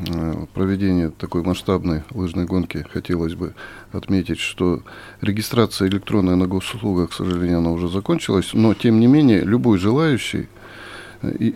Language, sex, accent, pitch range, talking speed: Russian, male, native, 90-110 Hz, 125 wpm